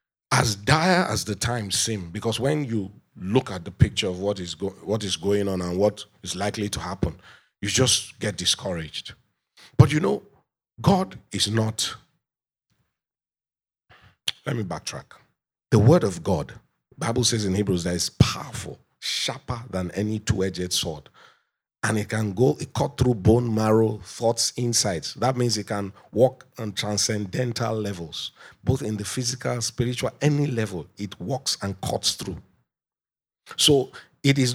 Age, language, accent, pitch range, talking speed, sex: 50-69, English, Nigerian, 100-125 Hz, 160 wpm, male